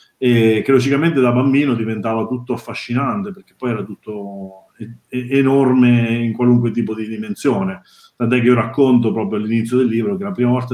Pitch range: 115-145 Hz